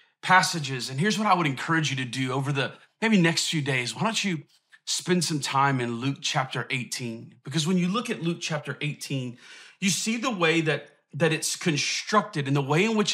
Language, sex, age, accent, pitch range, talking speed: English, male, 30-49, American, 150-190 Hz, 215 wpm